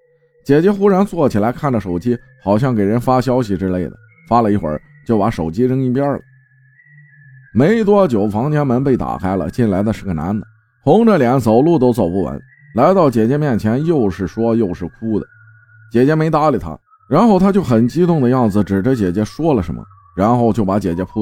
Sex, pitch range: male, 100-150 Hz